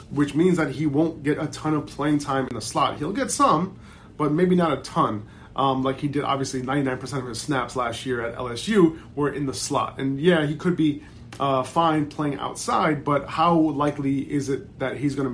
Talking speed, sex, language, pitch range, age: 225 wpm, male, English, 125-165 Hz, 30-49